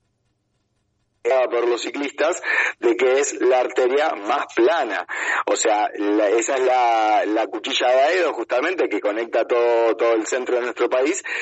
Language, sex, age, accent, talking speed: Spanish, male, 30-49, Argentinian, 160 wpm